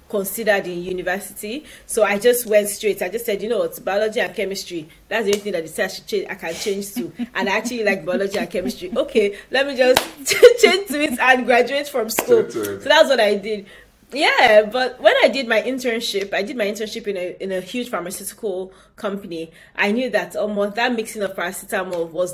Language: English